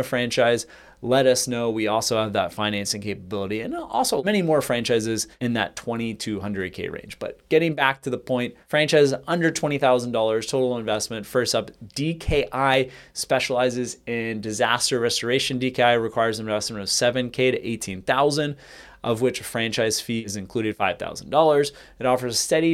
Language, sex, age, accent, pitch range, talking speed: English, male, 30-49, American, 110-135 Hz, 150 wpm